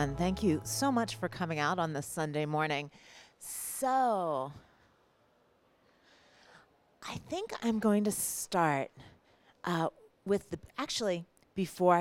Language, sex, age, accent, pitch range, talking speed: English, female, 40-59, American, 150-180 Hz, 115 wpm